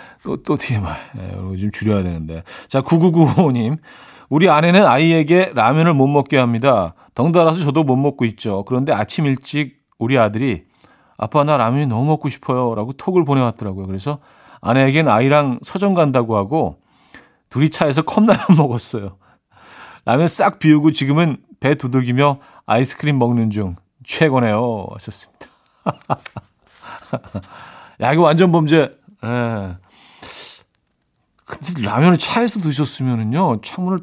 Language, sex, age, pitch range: Korean, male, 40-59, 110-155 Hz